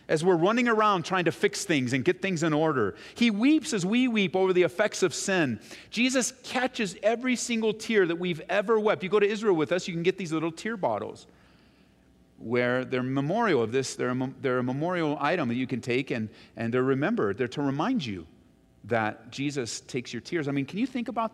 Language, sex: English, male